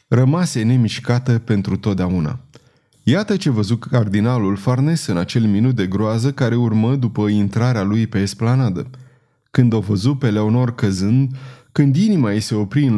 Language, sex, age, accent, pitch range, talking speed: Romanian, male, 20-39, native, 105-135 Hz, 155 wpm